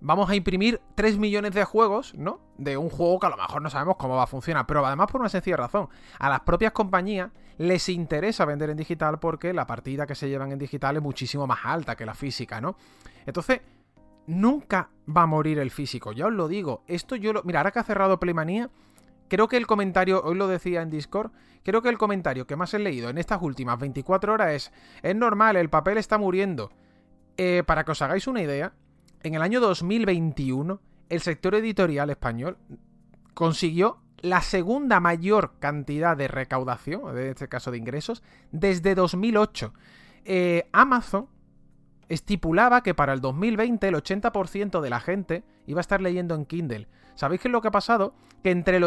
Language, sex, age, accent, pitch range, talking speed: English, male, 30-49, Spanish, 150-205 Hz, 195 wpm